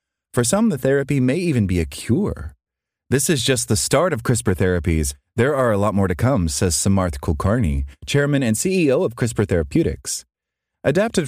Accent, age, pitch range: American, 30-49, 85-125 Hz